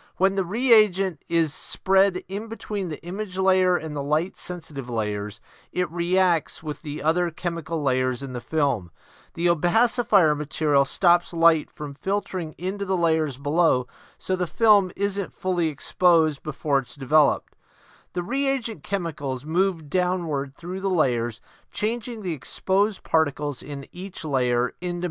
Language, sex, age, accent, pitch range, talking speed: English, male, 40-59, American, 145-190 Hz, 145 wpm